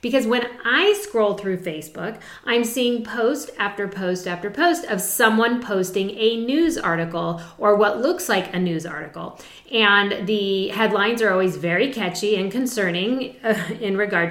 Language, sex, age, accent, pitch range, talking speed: English, female, 40-59, American, 190-260 Hz, 160 wpm